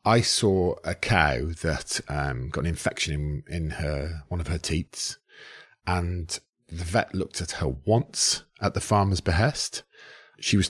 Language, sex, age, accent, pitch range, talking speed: English, male, 40-59, British, 80-115 Hz, 165 wpm